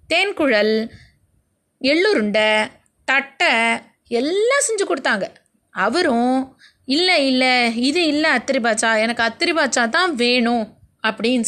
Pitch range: 230-315 Hz